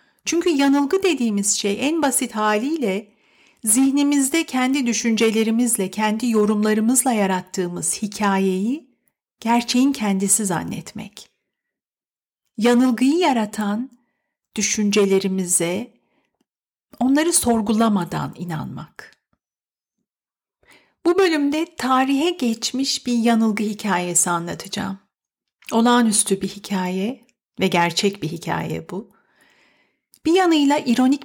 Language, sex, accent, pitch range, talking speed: Turkish, female, native, 195-255 Hz, 80 wpm